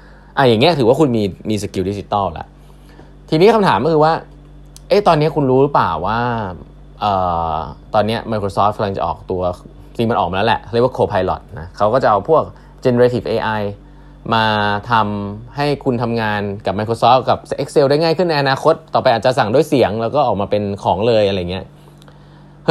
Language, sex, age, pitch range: Thai, male, 20-39, 105-155 Hz